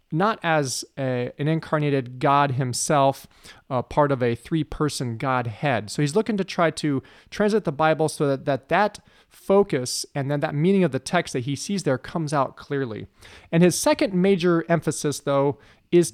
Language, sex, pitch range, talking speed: English, male, 140-180 Hz, 175 wpm